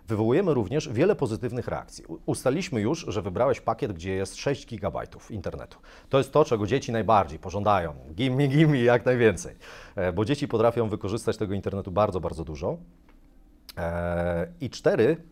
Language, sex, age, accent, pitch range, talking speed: Polish, male, 40-59, native, 105-140 Hz, 155 wpm